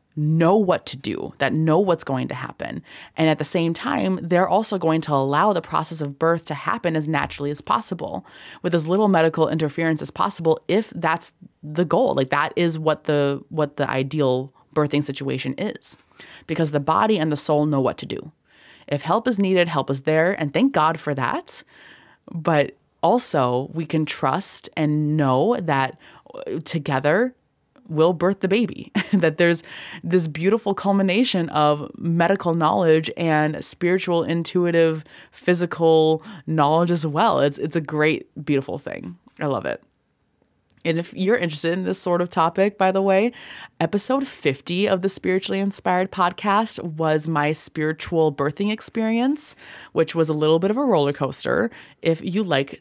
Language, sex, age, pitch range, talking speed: English, female, 20-39, 150-190 Hz, 165 wpm